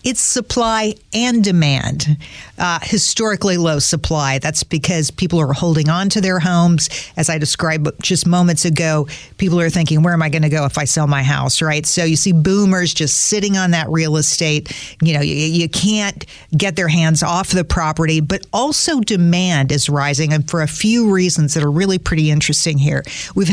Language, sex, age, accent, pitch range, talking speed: English, female, 50-69, American, 155-185 Hz, 195 wpm